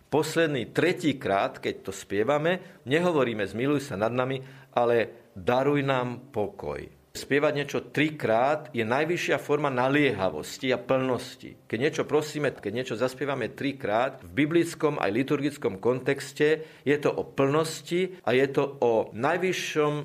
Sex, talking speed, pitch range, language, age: male, 135 wpm, 125-155 Hz, Slovak, 40-59